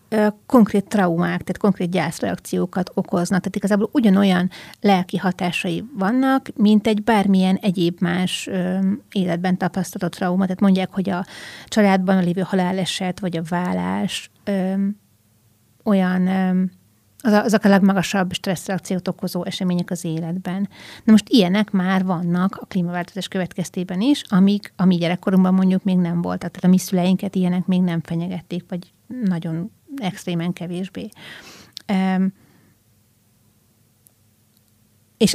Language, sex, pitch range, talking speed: Hungarian, female, 175-195 Hz, 120 wpm